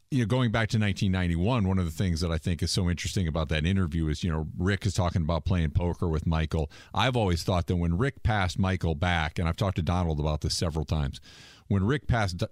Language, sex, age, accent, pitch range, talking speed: English, male, 40-59, American, 85-100 Hz, 245 wpm